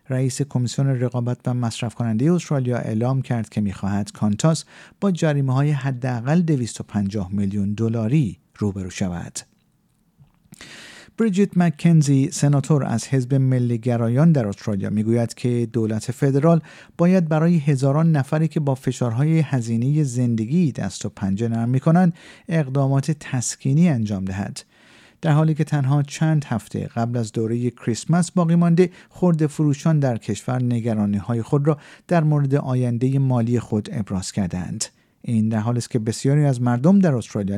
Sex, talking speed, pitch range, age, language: male, 135 wpm, 115-150 Hz, 50-69, Persian